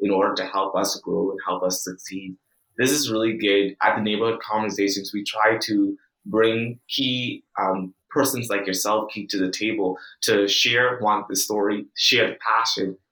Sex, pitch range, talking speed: male, 100-115 Hz, 180 wpm